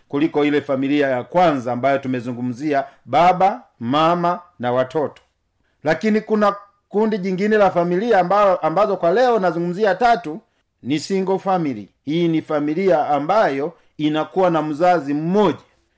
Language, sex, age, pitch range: Swahili, male, 50-69, 140-190 Hz